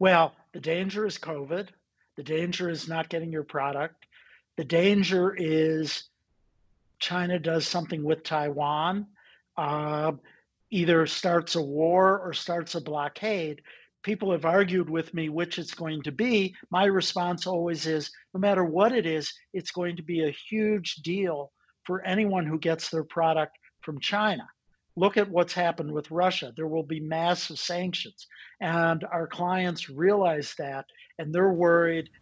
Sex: male